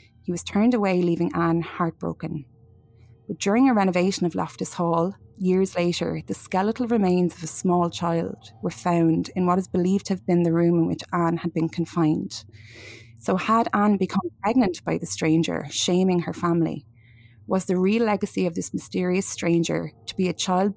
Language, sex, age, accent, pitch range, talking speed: English, female, 20-39, Irish, 160-185 Hz, 180 wpm